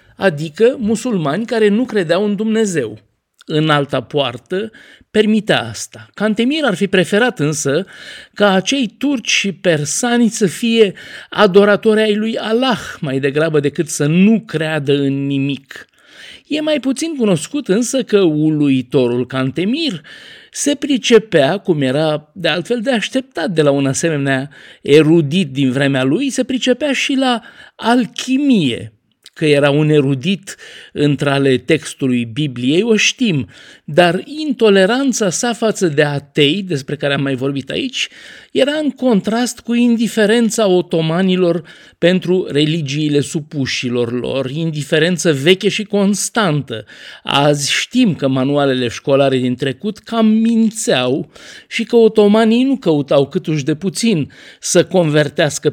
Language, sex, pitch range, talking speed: Romanian, male, 145-225 Hz, 130 wpm